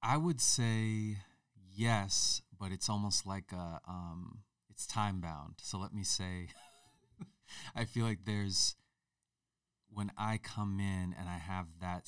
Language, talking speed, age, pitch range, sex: English, 145 wpm, 30-49, 85-100 Hz, male